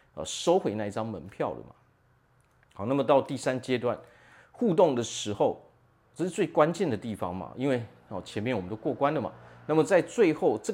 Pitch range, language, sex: 100-135 Hz, Chinese, male